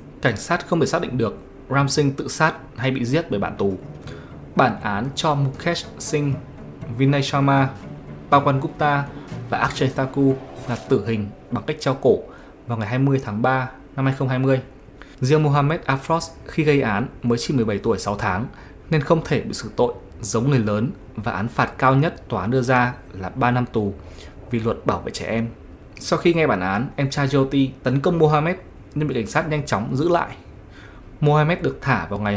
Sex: male